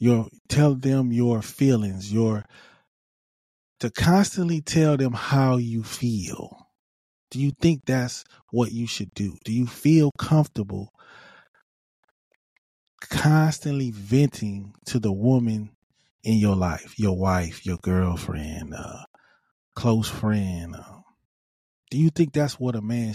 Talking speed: 125 wpm